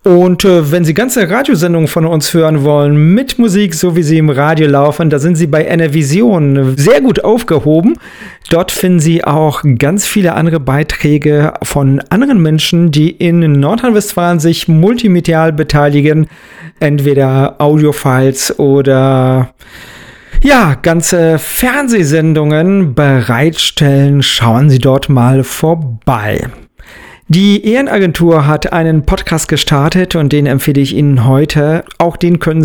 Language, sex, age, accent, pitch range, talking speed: German, male, 40-59, German, 135-170 Hz, 125 wpm